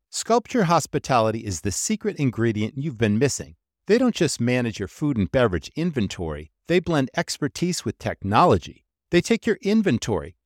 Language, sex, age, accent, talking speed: English, male, 50-69, American, 155 wpm